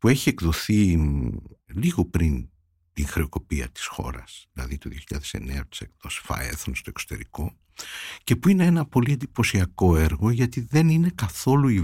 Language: Greek